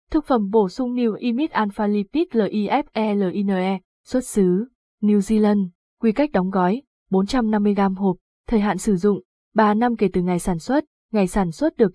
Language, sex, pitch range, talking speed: Vietnamese, female, 200-245 Hz, 170 wpm